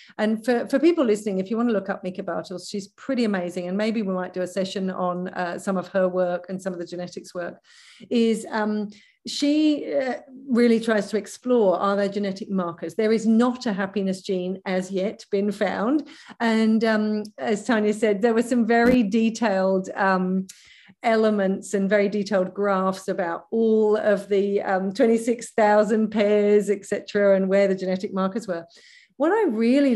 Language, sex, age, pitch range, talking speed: English, female, 40-59, 190-225 Hz, 180 wpm